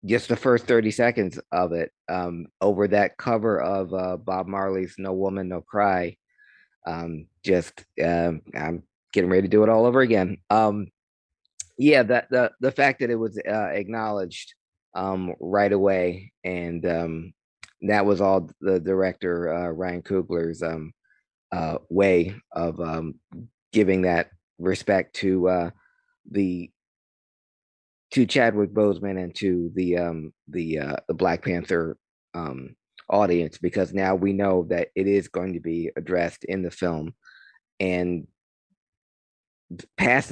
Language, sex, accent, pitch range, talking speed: English, male, American, 90-110 Hz, 145 wpm